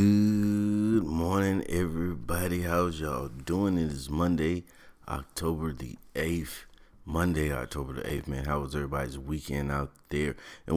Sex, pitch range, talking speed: male, 70-80 Hz, 135 wpm